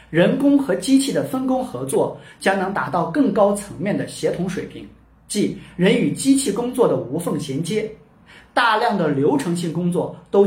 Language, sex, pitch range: Chinese, male, 160-260 Hz